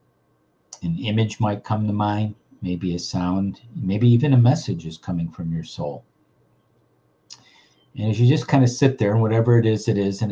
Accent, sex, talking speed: American, male, 190 wpm